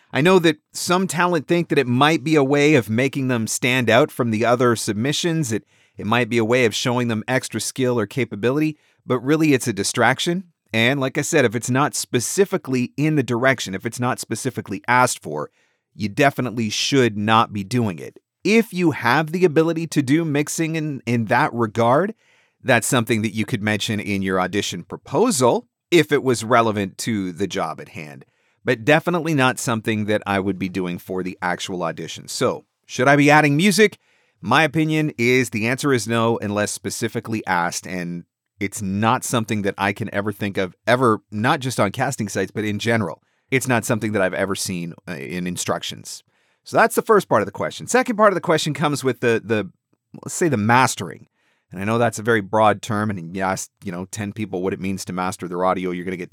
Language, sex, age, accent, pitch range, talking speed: English, male, 40-59, American, 105-145 Hz, 210 wpm